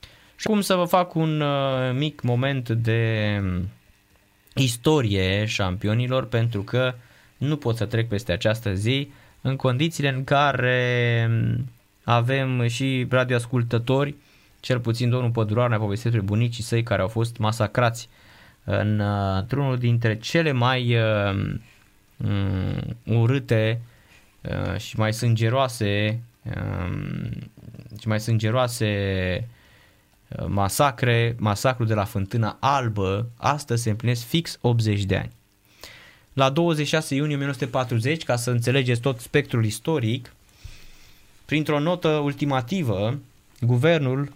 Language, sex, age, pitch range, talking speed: Romanian, male, 20-39, 105-135 Hz, 115 wpm